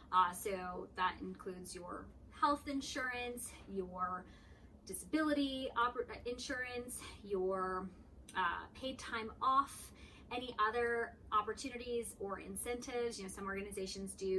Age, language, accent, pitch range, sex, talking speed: 30-49, English, American, 195-240 Hz, female, 110 wpm